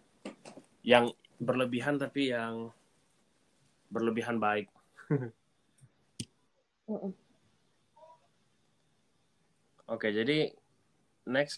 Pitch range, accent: 105-130 Hz, native